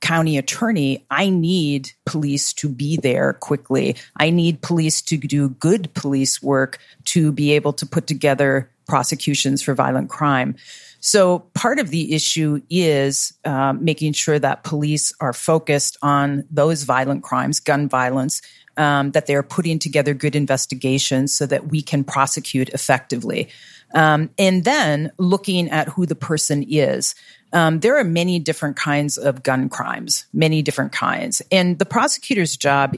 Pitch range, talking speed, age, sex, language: 140-160 Hz, 155 wpm, 40-59, female, English